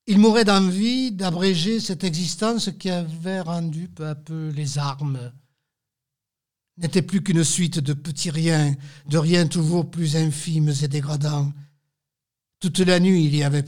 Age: 60-79